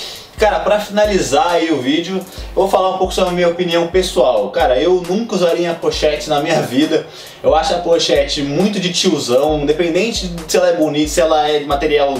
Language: Portuguese